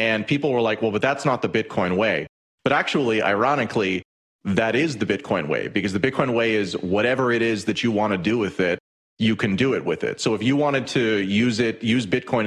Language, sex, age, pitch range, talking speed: English, male, 30-49, 95-120 Hz, 235 wpm